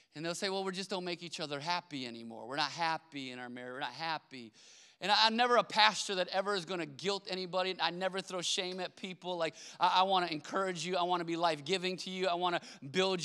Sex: male